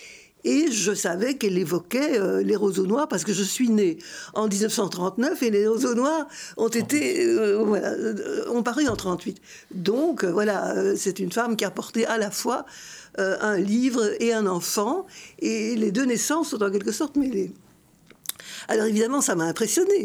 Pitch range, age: 200-290 Hz, 60-79